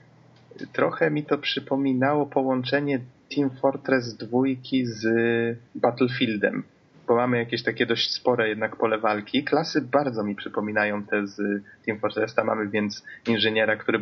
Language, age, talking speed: Polish, 20-39, 135 wpm